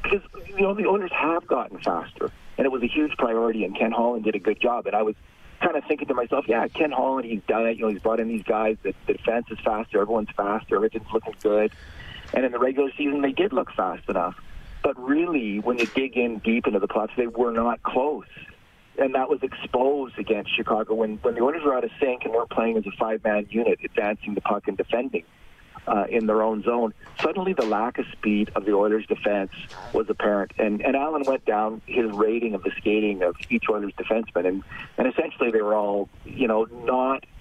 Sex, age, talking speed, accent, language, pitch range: male, 40-59, 230 wpm, American, English, 105-120 Hz